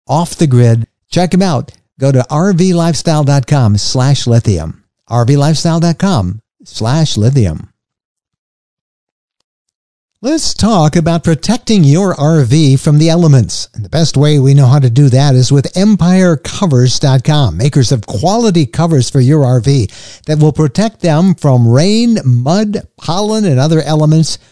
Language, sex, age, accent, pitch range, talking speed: English, male, 60-79, American, 130-170 Hz, 130 wpm